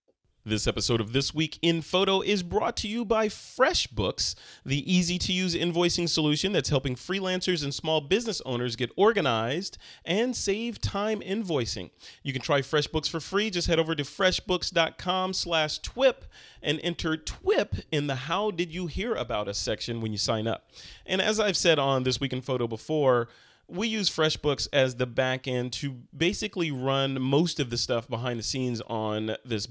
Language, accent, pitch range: English, American, 125-180 Hz